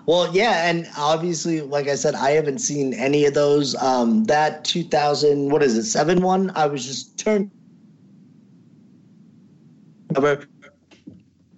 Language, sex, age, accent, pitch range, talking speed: English, male, 30-49, American, 125-170 Hz, 125 wpm